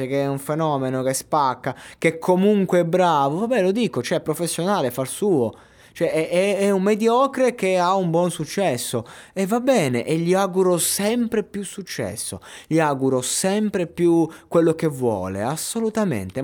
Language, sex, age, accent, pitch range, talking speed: Italian, male, 20-39, native, 125-175 Hz, 170 wpm